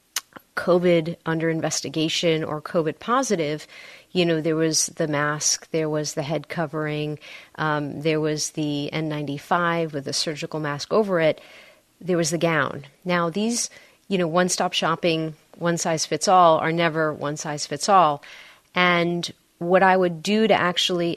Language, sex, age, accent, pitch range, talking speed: English, female, 30-49, American, 155-190 Hz, 140 wpm